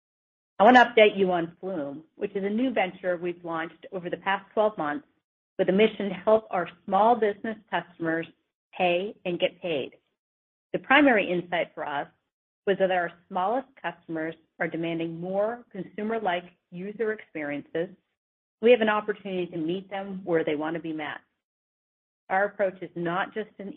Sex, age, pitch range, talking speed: female, 40-59, 165-200 Hz, 170 wpm